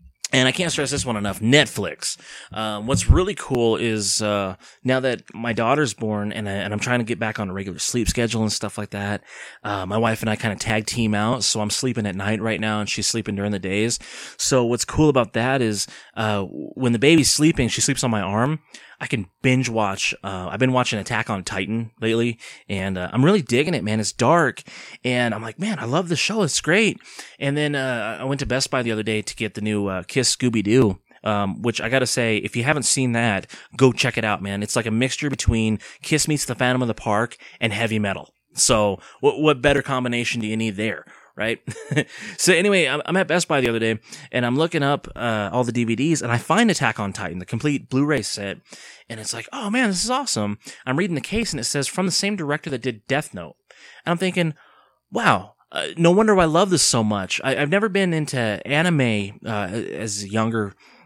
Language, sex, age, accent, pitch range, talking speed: English, male, 20-39, American, 105-140 Hz, 235 wpm